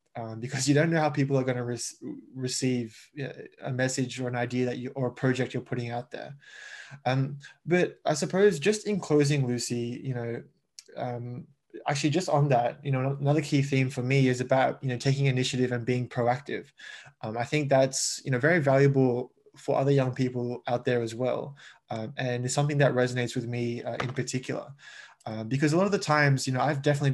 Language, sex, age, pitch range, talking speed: English, male, 20-39, 125-140 Hz, 210 wpm